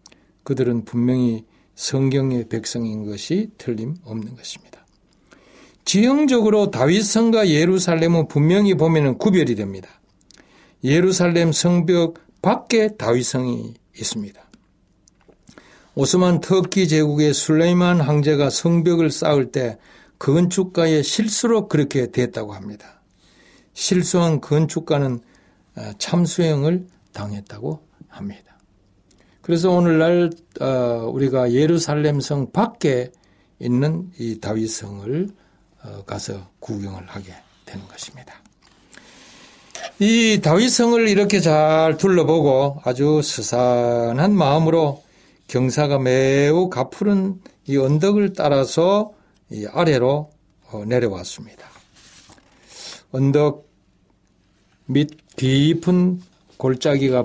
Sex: male